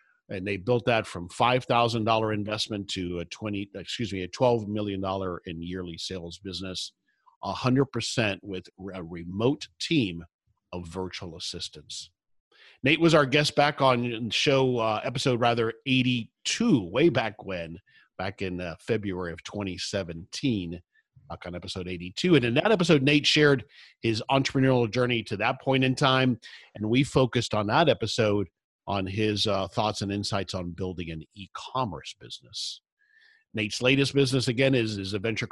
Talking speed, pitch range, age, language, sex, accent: 165 wpm, 95-125 Hz, 50-69, English, male, American